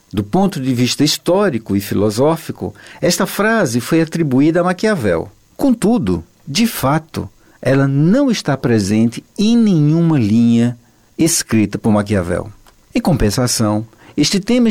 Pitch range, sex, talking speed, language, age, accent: 110-175 Hz, male, 120 wpm, Portuguese, 60-79, Brazilian